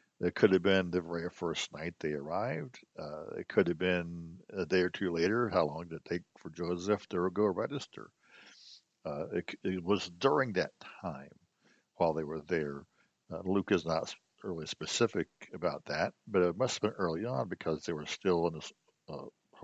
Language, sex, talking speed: English, male, 195 wpm